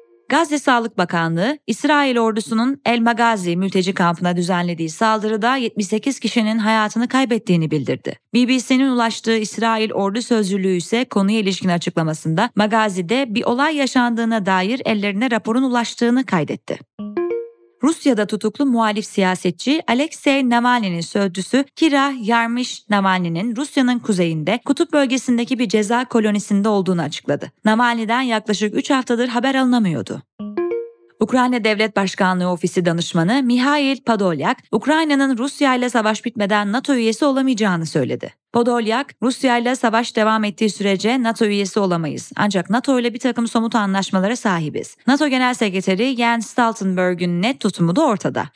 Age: 30-49